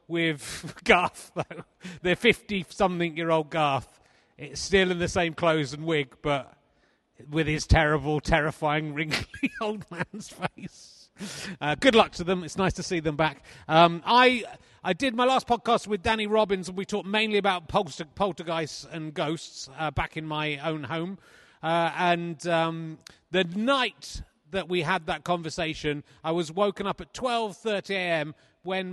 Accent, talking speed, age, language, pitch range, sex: British, 160 wpm, 30-49, English, 160-210 Hz, male